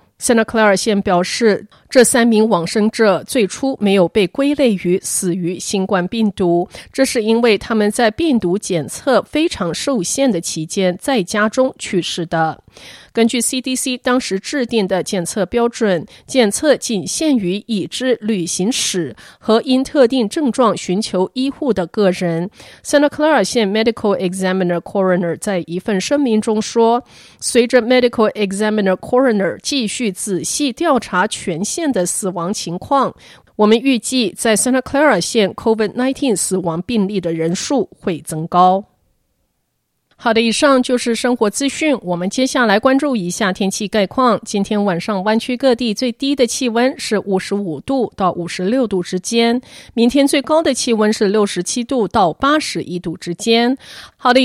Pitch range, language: 185-250 Hz, Chinese